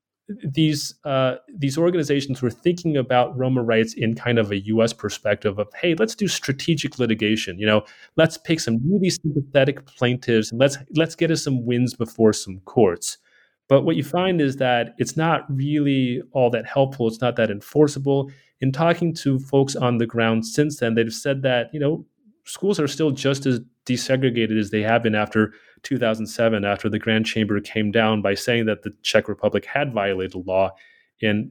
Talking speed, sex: 185 wpm, male